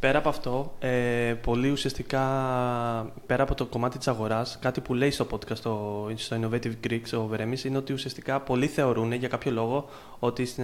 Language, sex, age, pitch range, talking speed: Greek, male, 20-39, 115-140 Hz, 175 wpm